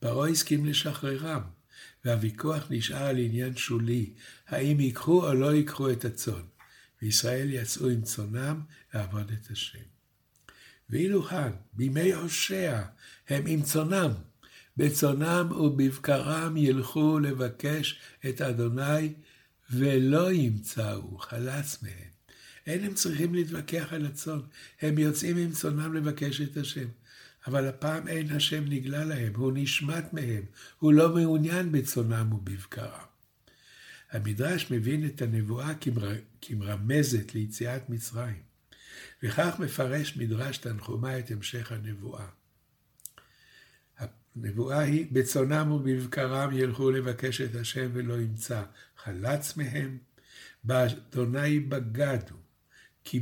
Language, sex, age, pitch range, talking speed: Hebrew, male, 60-79, 115-150 Hz, 110 wpm